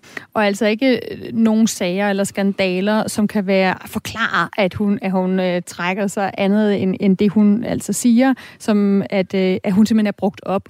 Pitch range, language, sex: 200-245 Hz, Danish, female